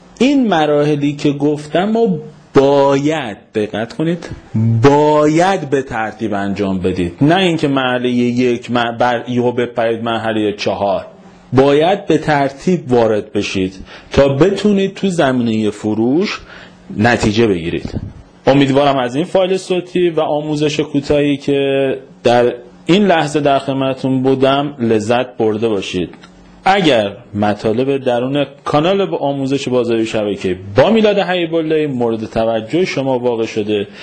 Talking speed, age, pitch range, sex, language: 120 wpm, 30-49, 115-160 Hz, male, Persian